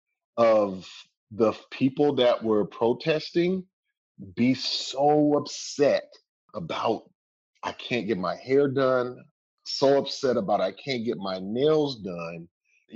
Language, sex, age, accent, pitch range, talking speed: English, male, 30-49, American, 115-155 Hz, 120 wpm